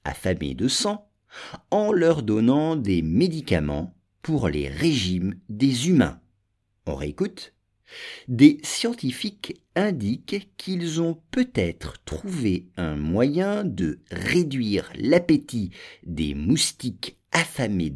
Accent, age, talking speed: French, 50-69, 100 wpm